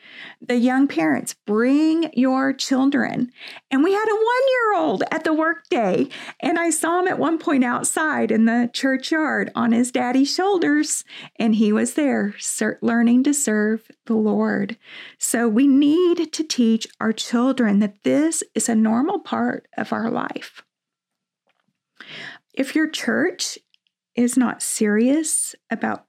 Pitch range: 225-285 Hz